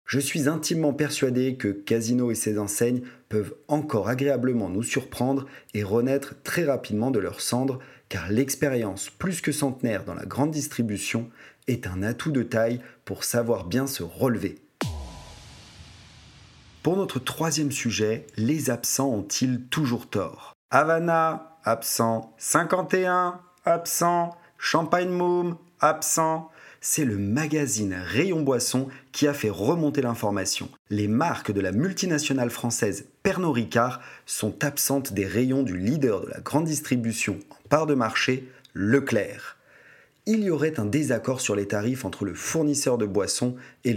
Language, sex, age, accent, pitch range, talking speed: French, male, 40-59, French, 115-150 Hz, 140 wpm